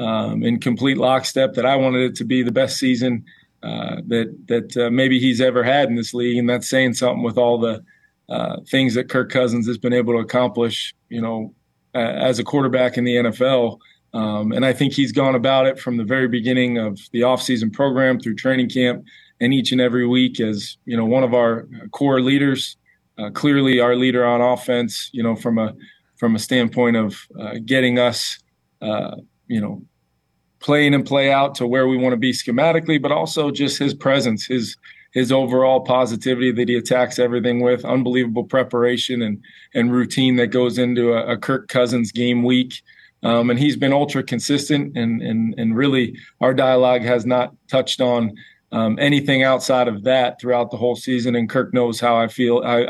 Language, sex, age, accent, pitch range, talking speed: English, male, 20-39, American, 120-130 Hz, 195 wpm